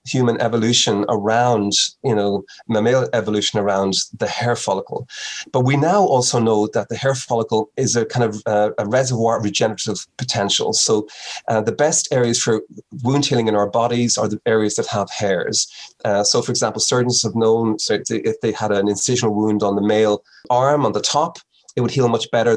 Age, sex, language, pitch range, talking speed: 30-49, male, English, 105-120 Hz, 190 wpm